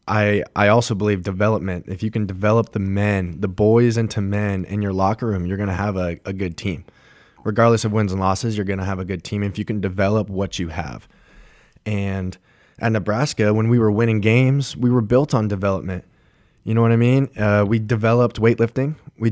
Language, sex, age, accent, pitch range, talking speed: English, male, 20-39, American, 95-110 Hz, 215 wpm